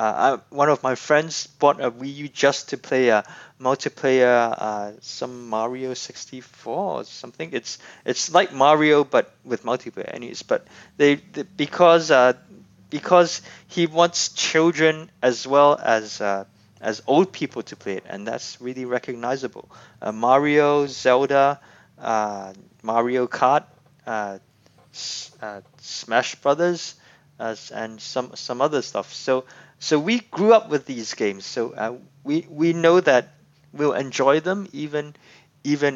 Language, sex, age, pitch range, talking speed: English, male, 20-39, 120-150 Hz, 145 wpm